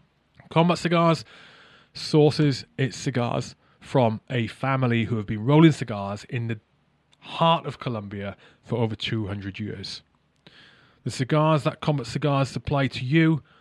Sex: male